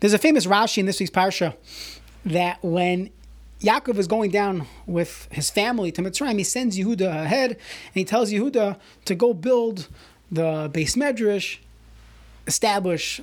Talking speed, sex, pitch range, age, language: 155 wpm, male, 165-215 Hz, 30-49, English